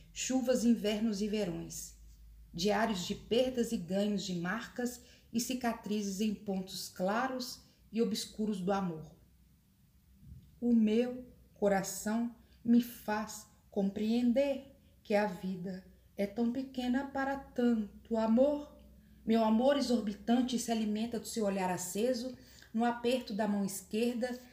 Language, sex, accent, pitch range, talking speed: Portuguese, female, Brazilian, 195-240 Hz, 120 wpm